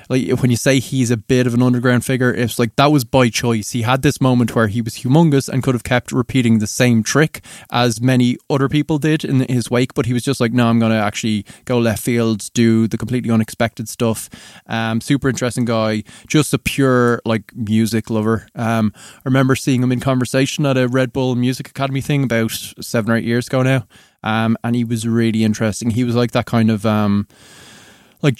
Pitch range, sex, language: 110-130 Hz, male, English